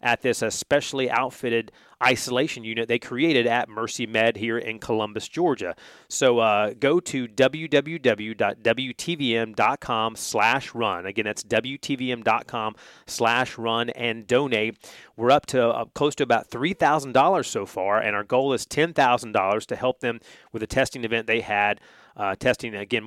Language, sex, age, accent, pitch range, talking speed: English, male, 30-49, American, 110-130 Hz, 150 wpm